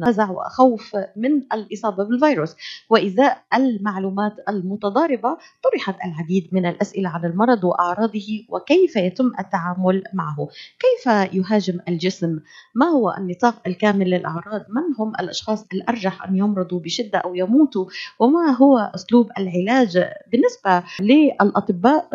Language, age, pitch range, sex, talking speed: Arabic, 30-49, 185-240 Hz, female, 110 wpm